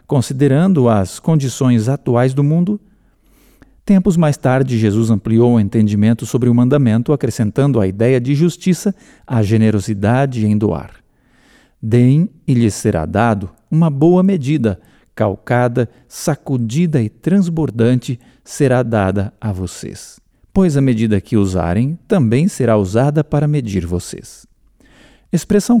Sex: male